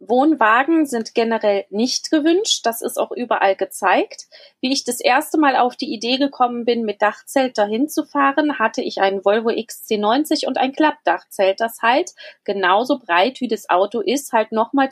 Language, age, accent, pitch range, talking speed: German, 30-49, German, 210-275 Hz, 175 wpm